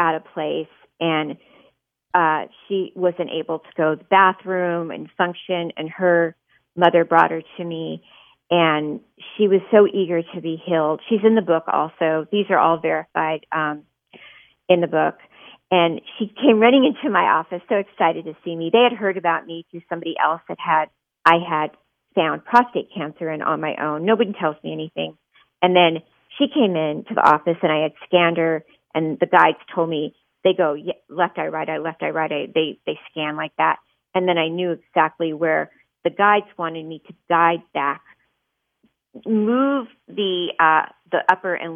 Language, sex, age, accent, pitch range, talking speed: English, female, 40-59, American, 155-185 Hz, 185 wpm